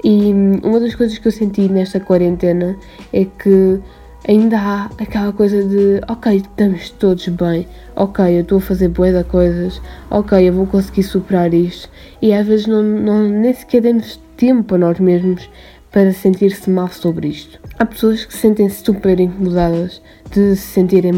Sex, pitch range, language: female, 185-215 Hz, Portuguese